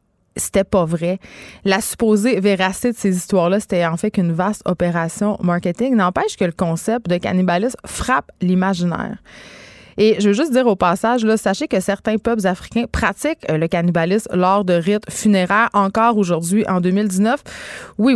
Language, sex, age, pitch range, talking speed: French, female, 20-39, 185-225 Hz, 160 wpm